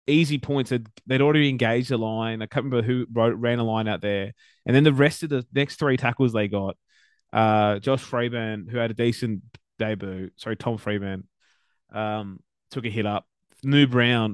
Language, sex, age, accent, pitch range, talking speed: English, male, 20-39, Australian, 105-125 Hz, 200 wpm